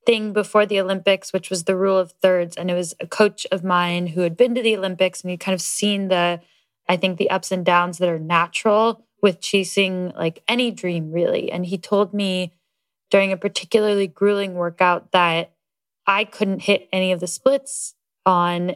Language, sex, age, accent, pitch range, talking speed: English, female, 10-29, American, 180-210 Hz, 200 wpm